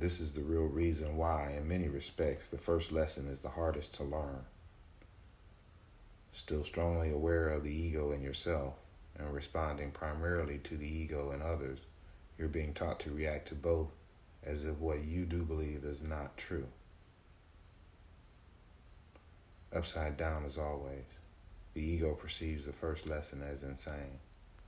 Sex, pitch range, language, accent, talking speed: male, 75-85 Hz, English, American, 150 wpm